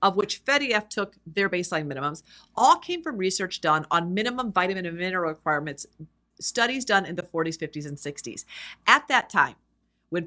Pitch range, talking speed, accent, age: 170-230 Hz, 175 wpm, American, 40-59